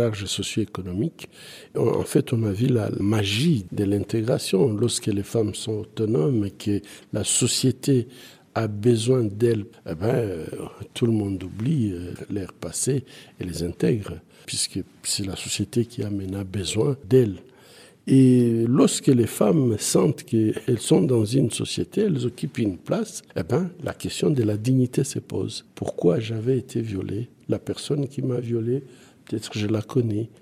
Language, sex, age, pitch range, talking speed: French, male, 60-79, 100-130 Hz, 160 wpm